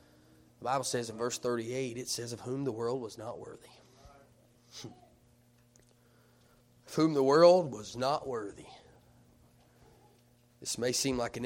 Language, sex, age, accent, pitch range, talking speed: English, male, 30-49, American, 120-155 Hz, 140 wpm